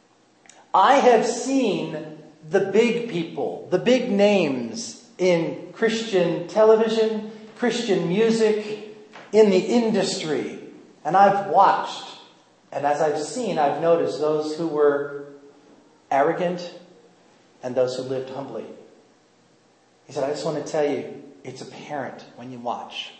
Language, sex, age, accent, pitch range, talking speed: English, male, 40-59, American, 145-215 Hz, 125 wpm